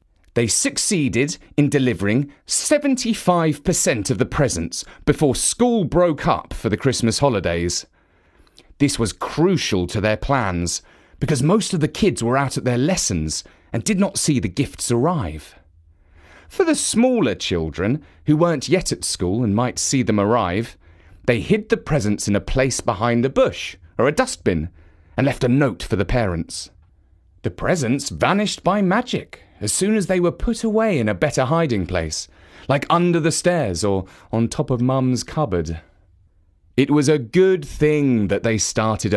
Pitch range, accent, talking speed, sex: 95-155 Hz, British, 165 wpm, male